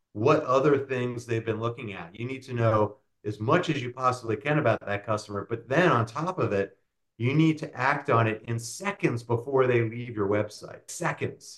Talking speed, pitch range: 205 wpm, 100-125 Hz